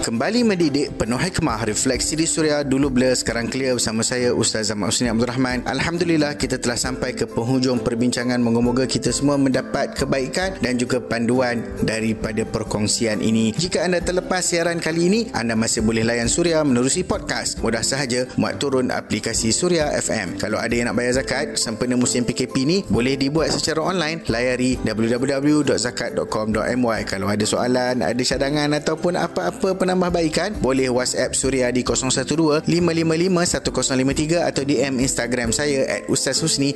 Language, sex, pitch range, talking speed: Malay, male, 115-150 Hz, 150 wpm